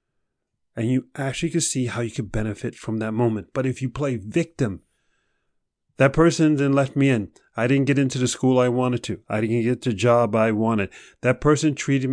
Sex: male